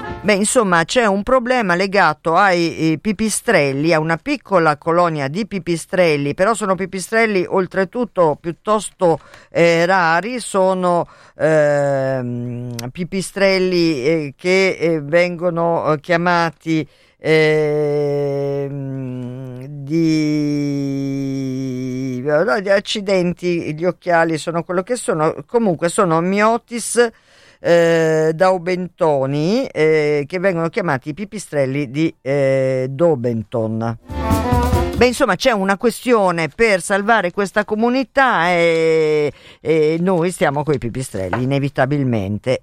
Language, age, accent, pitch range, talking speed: Italian, 50-69, native, 140-195 Hz, 100 wpm